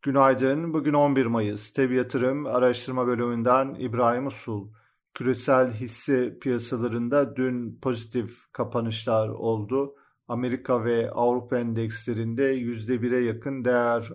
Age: 40-59